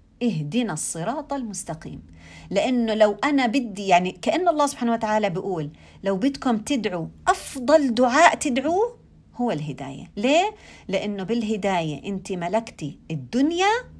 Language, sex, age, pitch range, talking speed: Arabic, female, 40-59, 175-275 Hz, 115 wpm